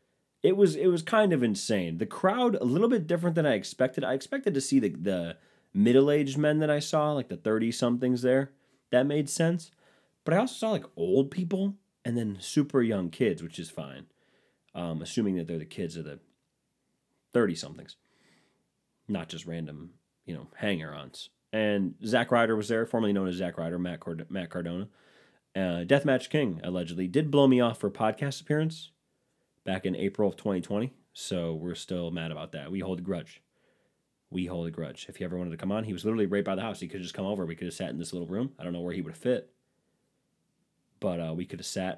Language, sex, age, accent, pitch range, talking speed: English, male, 30-49, American, 90-135 Hz, 215 wpm